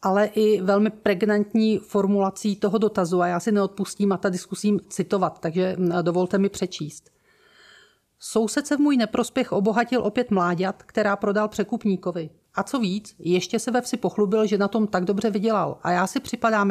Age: 40-59